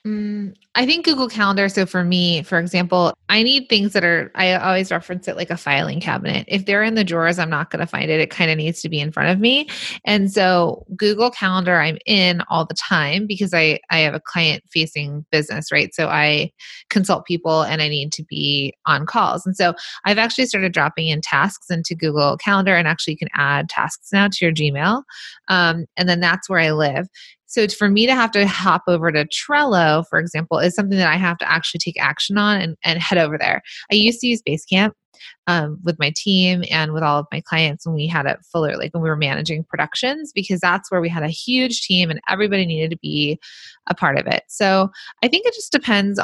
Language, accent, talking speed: English, American, 230 wpm